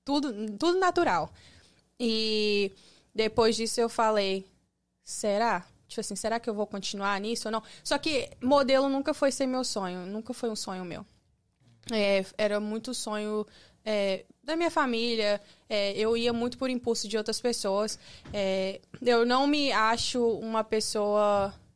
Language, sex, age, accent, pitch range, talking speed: Portuguese, female, 20-39, Brazilian, 205-250 Hz, 155 wpm